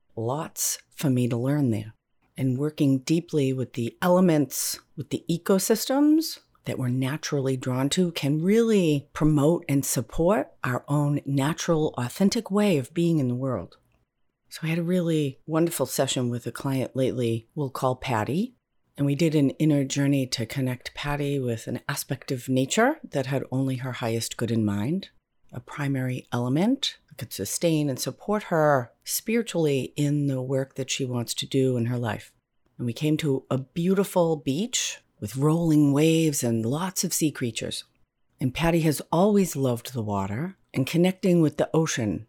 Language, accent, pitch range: English, American, 130-170 Hz